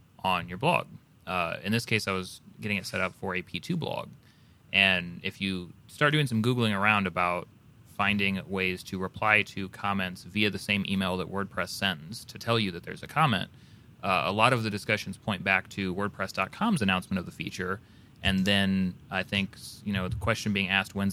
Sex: male